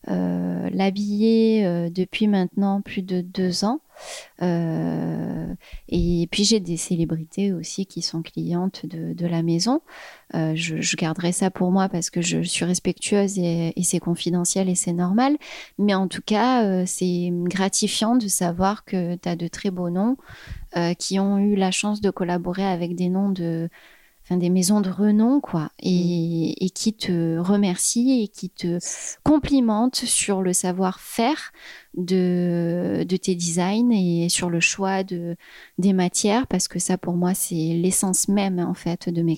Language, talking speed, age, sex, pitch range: French, 165 wpm, 30-49, female, 175-210 Hz